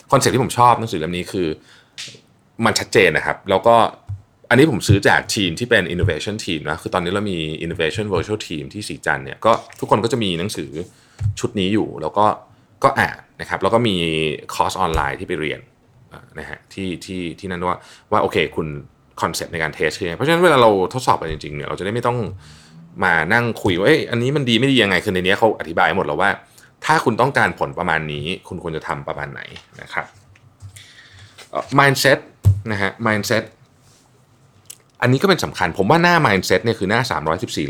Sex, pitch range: male, 90-120 Hz